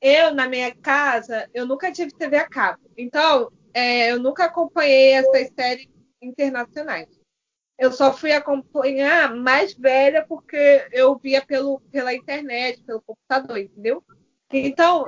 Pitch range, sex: 240-280 Hz, female